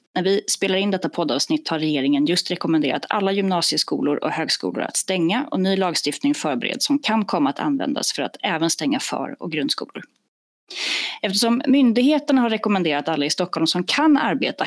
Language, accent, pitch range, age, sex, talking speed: Swedish, native, 180-270 Hz, 30-49, female, 170 wpm